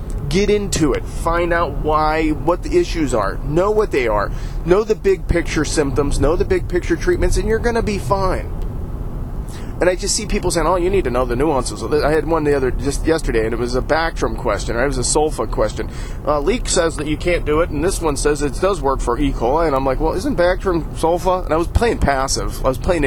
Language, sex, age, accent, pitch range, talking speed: English, male, 30-49, American, 130-185 Hz, 250 wpm